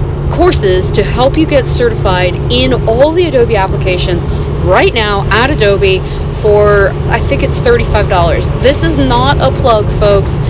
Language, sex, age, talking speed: English, female, 30-49, 150 wpm